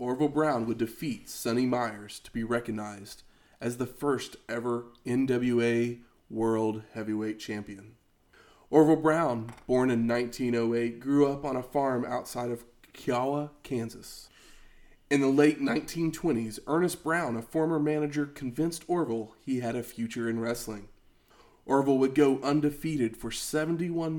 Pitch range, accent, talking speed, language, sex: 115-145 Hz, American, 135 wpm, English, male